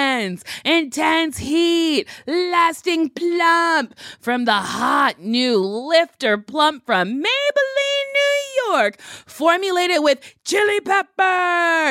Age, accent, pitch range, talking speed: 20-39, American, 230-335 Hz, 90 wpm